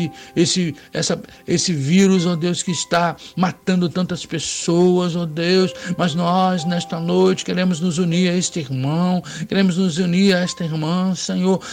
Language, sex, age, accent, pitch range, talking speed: Portuguese, male, 60-79, Brazilian, 180-220 Hz, 165 wpm